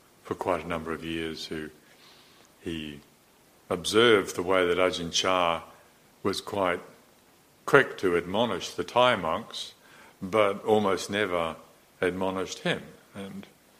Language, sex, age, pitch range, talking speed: English, male, 60-79, 80-95 Hz, 120 wpm